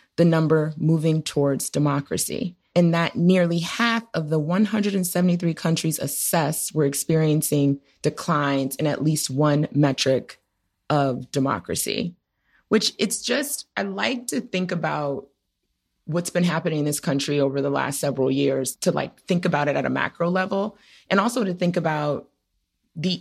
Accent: American